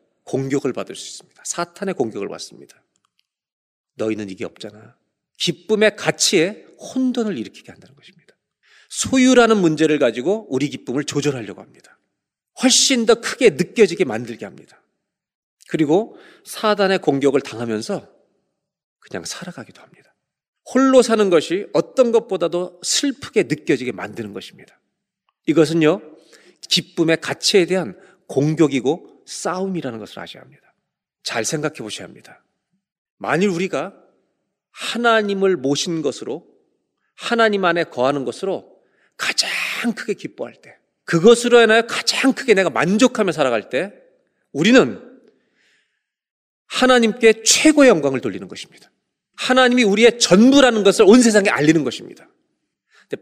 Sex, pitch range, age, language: male, 160-240 Hz, 40-59, Korean